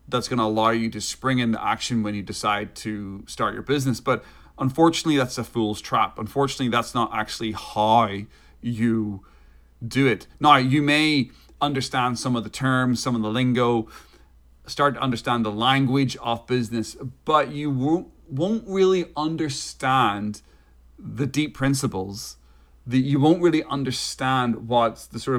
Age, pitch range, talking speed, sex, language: 30-49, 110-130 Hz, 155 wpm, male, English